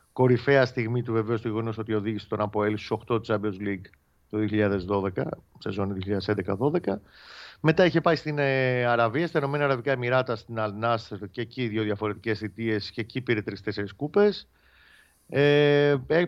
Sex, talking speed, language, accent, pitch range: male, 155 wpm, Greek, native, 110-145 Hz